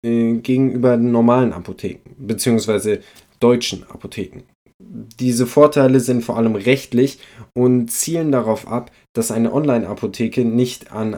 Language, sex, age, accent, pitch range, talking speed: German, male, 20-39, German, 100-130 Hz, 115 wpm